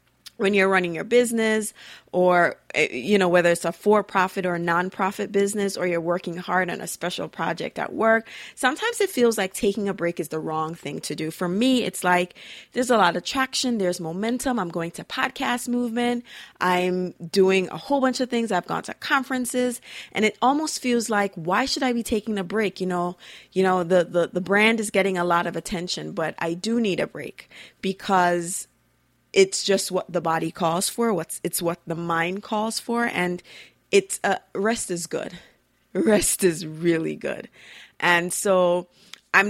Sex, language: female, English